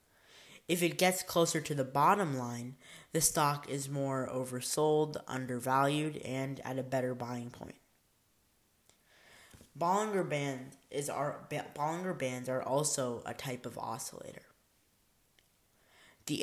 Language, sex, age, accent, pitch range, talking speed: English, female, 10-29, American, 130-160 Hz, 110 wpm